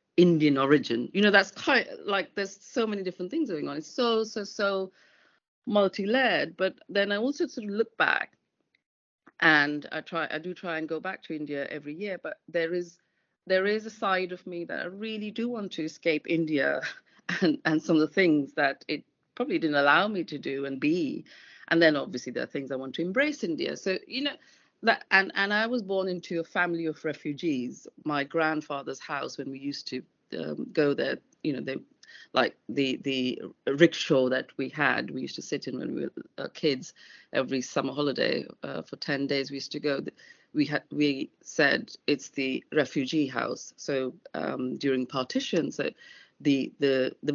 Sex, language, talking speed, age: female, English, 195 wpm, 40-59